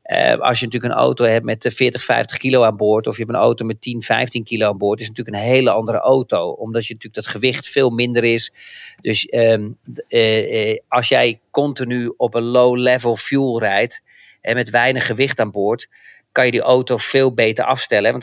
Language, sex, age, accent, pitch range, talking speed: Dutch, male, 40-59, Dutch, 115-135 Hz, 215 wpm